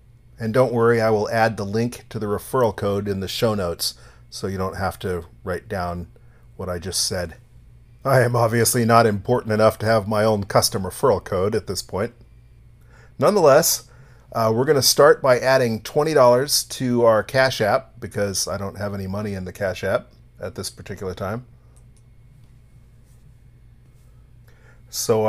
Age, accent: 40-59, American